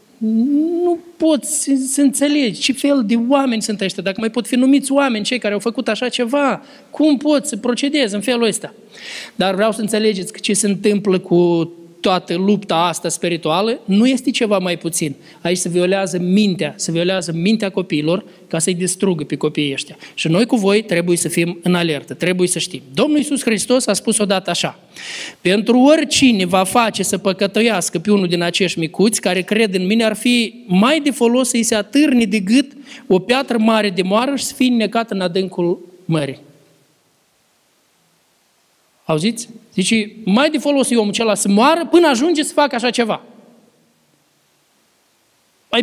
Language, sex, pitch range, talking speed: Romanian, male, 180-245 Hz, 175 wpm